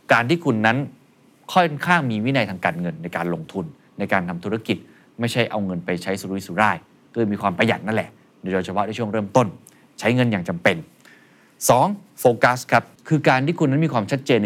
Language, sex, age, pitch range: Thai, male, 20-39, 100-135 Hz